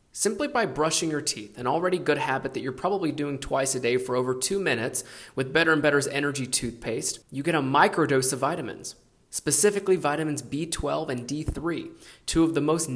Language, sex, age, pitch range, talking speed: English, male, 20-39, 125-160 Hz, 190 wpm